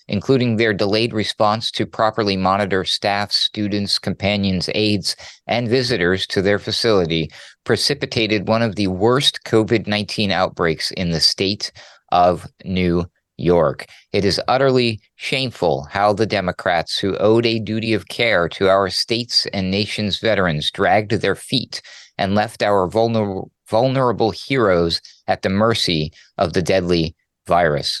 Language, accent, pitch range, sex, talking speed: English, American, 95-115 Hz, male, 135 wpm